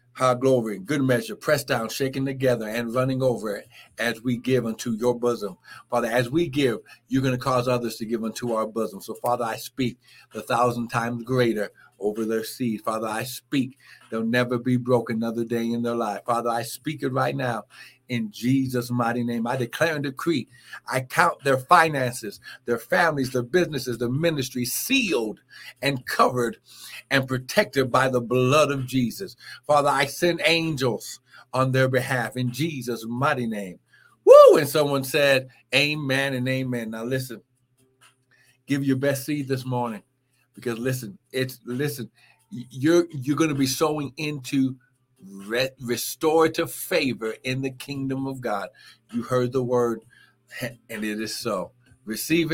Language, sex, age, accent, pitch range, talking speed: English, male, 60-79, American, 120-135 Hz, 165 wpm